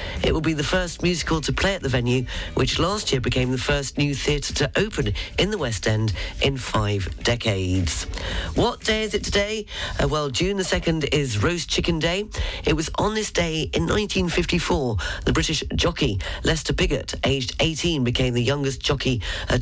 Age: 40-59